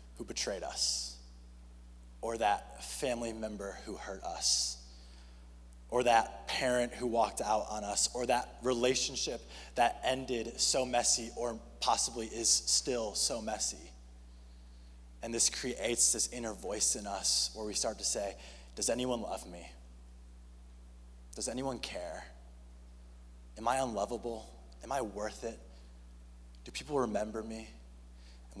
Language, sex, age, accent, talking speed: English, male, 20-39, American, 130 wpm